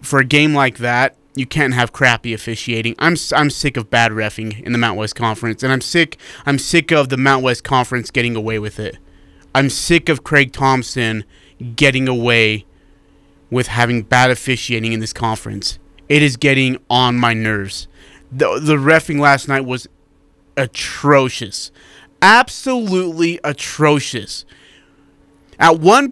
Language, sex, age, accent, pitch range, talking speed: English, male, 30-49, American, 120-160 Hz, 150 wpm